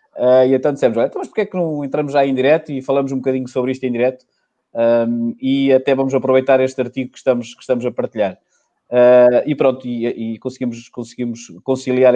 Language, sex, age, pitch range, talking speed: Portuguese, male, 20-39, 120-140 Hz, 215 wpm